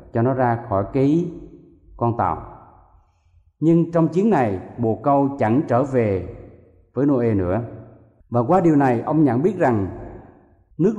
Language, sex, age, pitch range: Thai, male, 20-39, 115-175 Hz